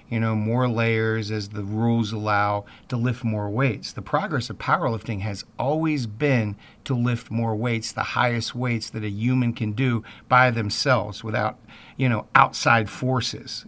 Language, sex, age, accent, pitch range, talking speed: English, male, 50-69, American, 110-125 Hz, 165 wpm